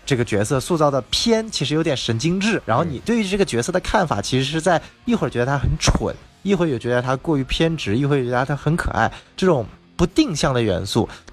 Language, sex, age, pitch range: Chinese, male, 20-39, 105-155 Hz